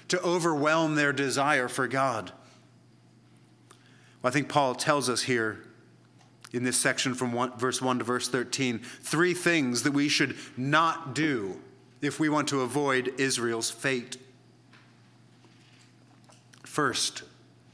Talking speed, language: 120 wpm, English